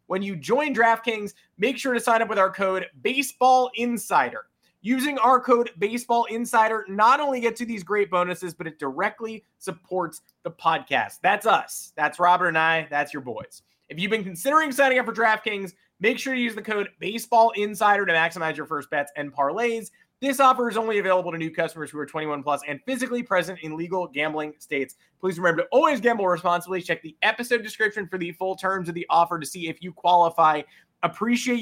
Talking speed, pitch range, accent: 195 wpm, 170-235 Hz, American